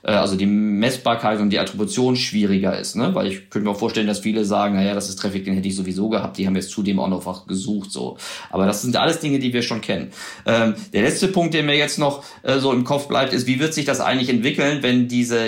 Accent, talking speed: German, 260 wpm